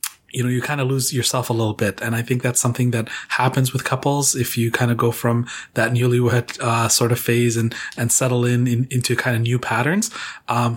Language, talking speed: English, 235 wpm